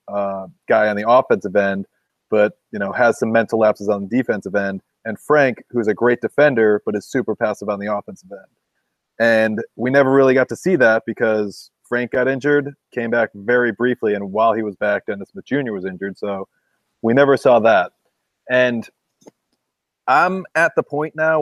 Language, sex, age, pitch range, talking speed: English, male, 30-49, 110-140 Hz, 190 wpm